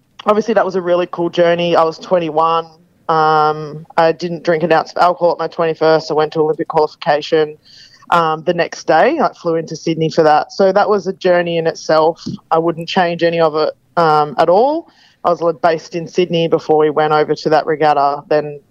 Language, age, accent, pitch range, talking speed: English, 20-39, Australian, 155-170 Hz, 210 wpm